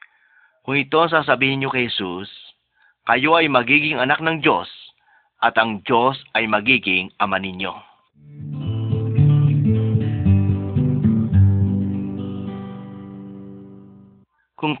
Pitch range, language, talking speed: 105-135 Hz, Arabic, 85 wpm